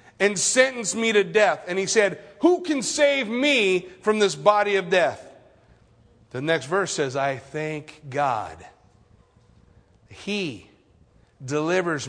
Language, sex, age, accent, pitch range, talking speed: English, male, 40-59, American, 140-230 Hz, 130 wpm